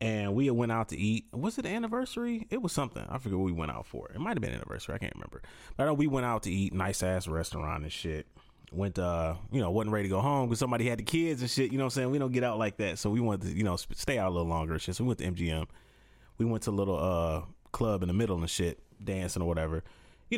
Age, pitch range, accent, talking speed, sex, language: 30-49, 85-120 Hz, American, 305 wpm, male, English